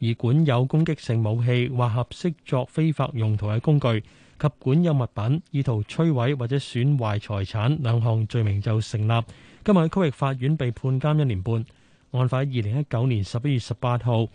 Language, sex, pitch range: Chinese, male, 115-145 Hz